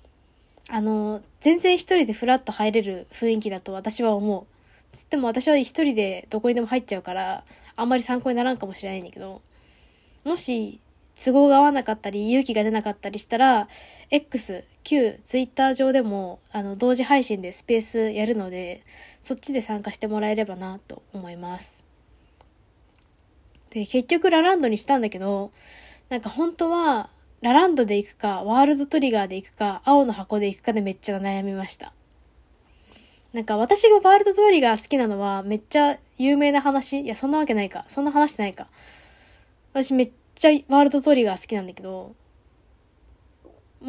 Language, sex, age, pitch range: Japanese, female, 10-29, 195-265 Hz